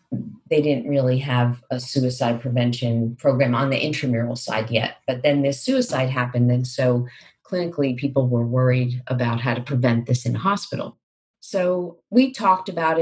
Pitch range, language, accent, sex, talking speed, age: 125-155 Hz, English, American, female, 160 wpm, 40-59